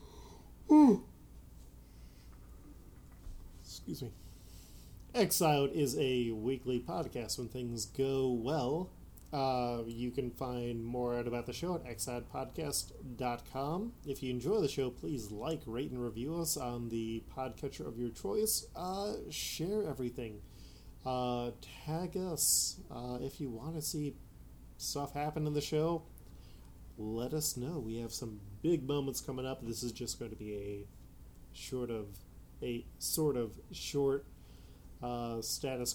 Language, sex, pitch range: English, male, 110-140 Hz